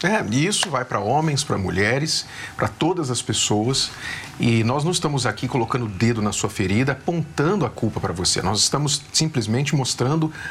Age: 40-59